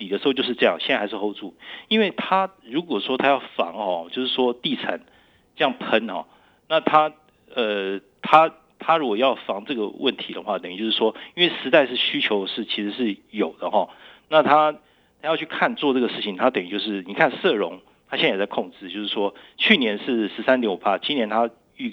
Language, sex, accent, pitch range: Chinese, male, native, 110-160 Hz